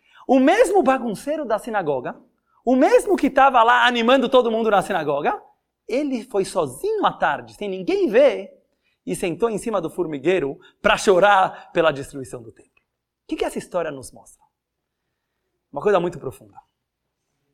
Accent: Brazilian